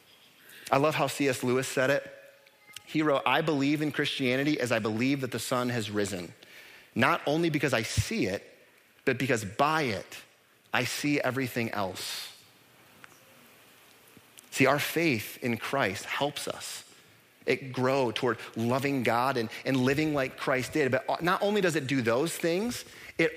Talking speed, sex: 160 wpm, male